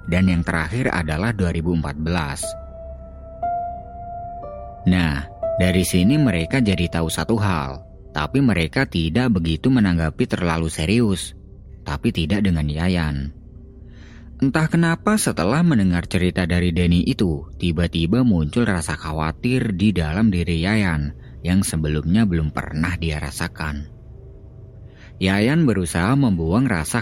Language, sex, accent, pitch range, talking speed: Indonesian, male, native, 80-115 Hz, 110 wpm